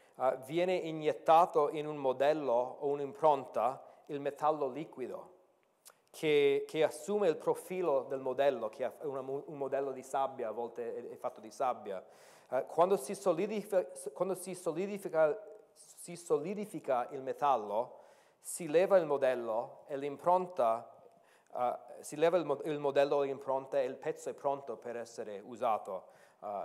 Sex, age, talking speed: male, 40-59, 125 wpm